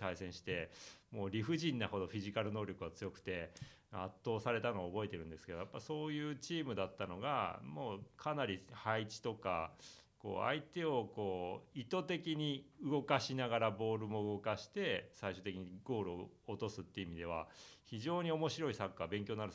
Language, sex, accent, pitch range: Japanese, male, native, 95-145 Hz